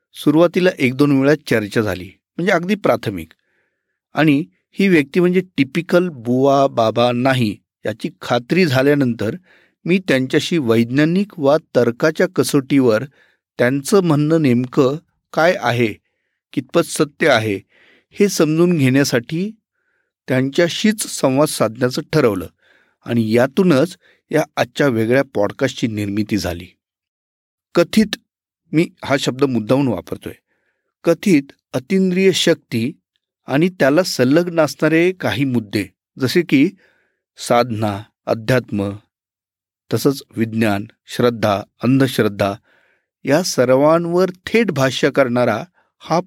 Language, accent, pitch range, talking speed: Marathi, native, 120-170 Hz, 105 wpm